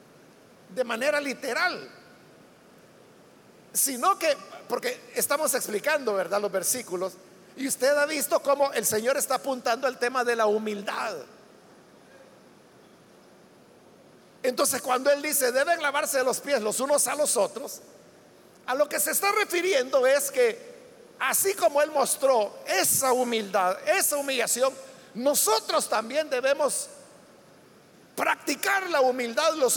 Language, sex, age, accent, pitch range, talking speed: Spanish, male, 50-69, Mexican, 240-310 Hz, 125 wpm